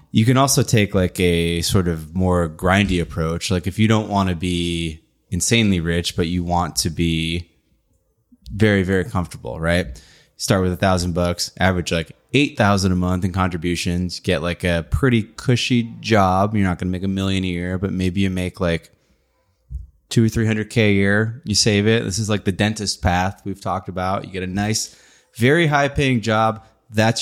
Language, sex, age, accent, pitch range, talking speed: English, male, 20-39, American, 85-105 Hz, 195 wpm